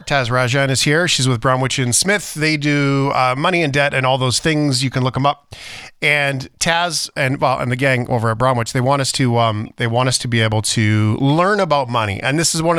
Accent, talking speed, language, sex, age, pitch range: American, 250 wpm, English, male, 40-59, 125-155 Hz